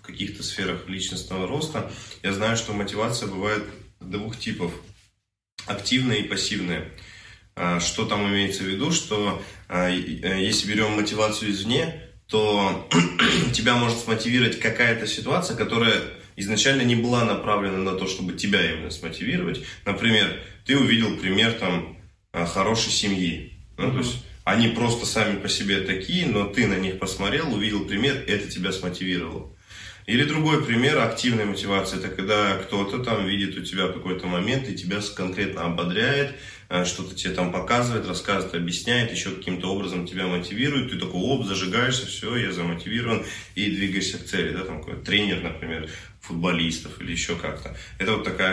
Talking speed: 145 wpm